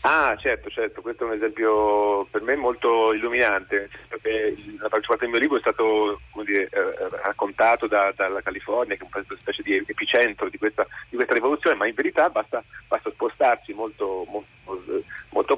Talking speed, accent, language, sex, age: 175 wpm, native, Italian, male, 40-59